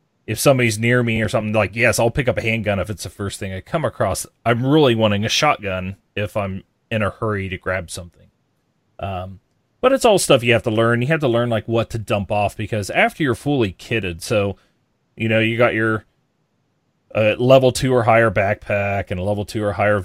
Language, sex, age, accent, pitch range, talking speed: English, male, 30-49, American, 100-120 Hz, 225 wpm